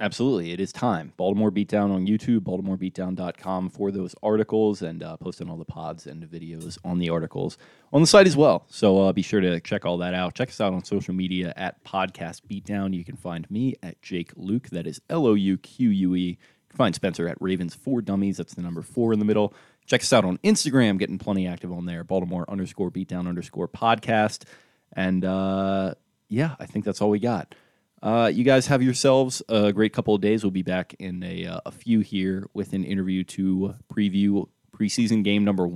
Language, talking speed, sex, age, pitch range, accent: English, 200 wpm, male, 20-39, 90-110 Hz, American